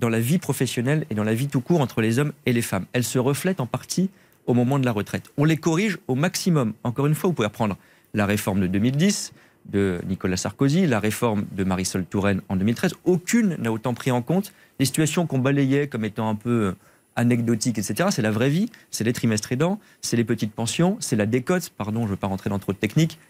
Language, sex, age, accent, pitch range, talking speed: French, male, 40-59, French, 105-145 Hz, 235 wpm